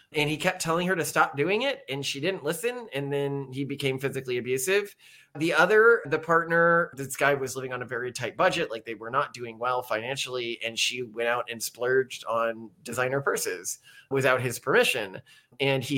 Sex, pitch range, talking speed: male, 130-165 Hz, 200 wpm